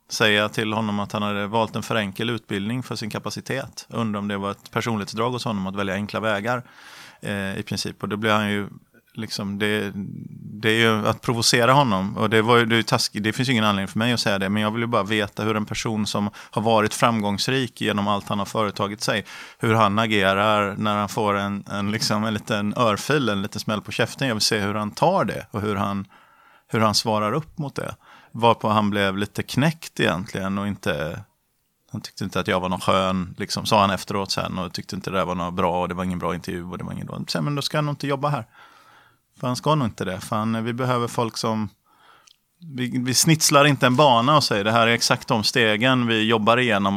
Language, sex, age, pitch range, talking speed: Swedish, male, 30-49, 100-115 Hz, 235 wpm